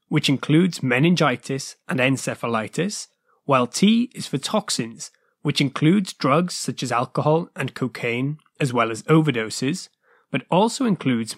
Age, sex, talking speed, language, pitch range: 20-39, male, 130 wpm, English, 135-185 Hz